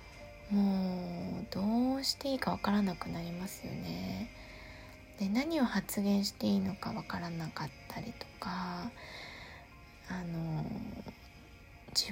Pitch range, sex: 175-220 Hz, female